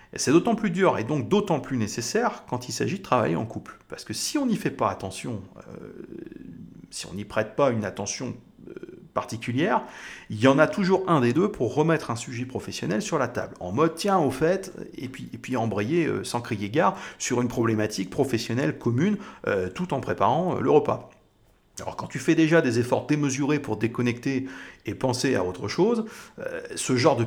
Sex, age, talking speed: male, 30-49, 210 wpm